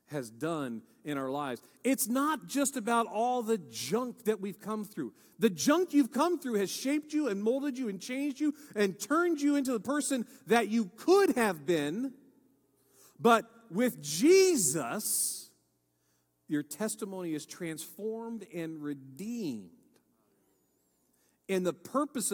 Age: 40-59